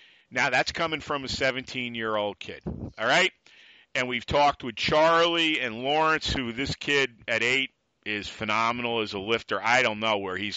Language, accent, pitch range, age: English, American, 105-135 Hz, 40-59